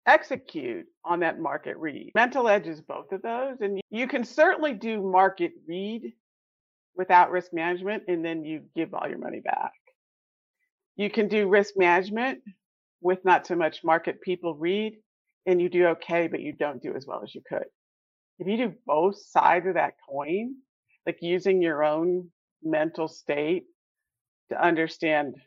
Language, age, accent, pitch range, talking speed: English, 50-69, American, 170-220 Hz, 165 wpm